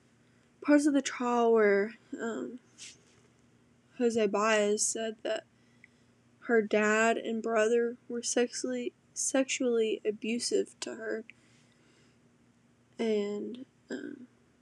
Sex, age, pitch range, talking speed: female, 10-29, 210-245 Hz, 90 wpm